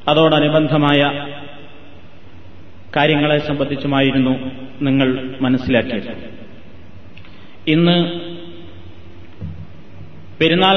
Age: 30-49